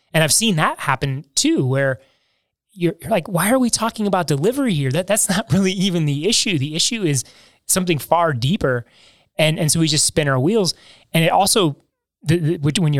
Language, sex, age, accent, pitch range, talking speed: English, male, 20-39, American, 135-165 Hz, 210 wpm